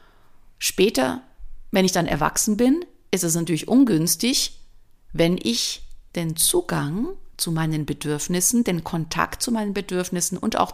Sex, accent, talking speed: female, German, 135 wpm